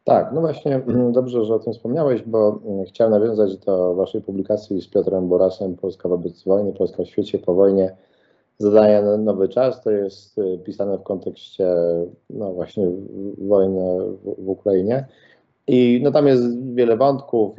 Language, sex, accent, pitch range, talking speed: English, male, Polish, 95-110 Hz, 155 wpm